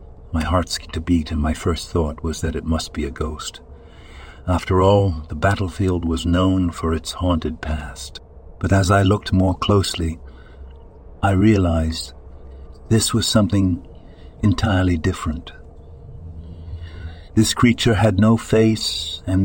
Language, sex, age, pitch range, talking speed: English, male, 60-79, 80-100 Hz, 135 wpm